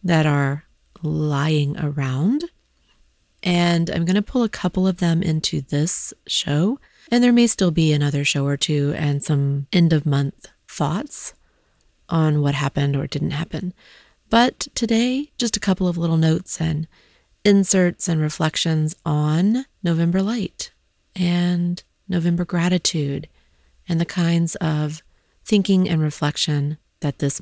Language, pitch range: English, 140-175 Hz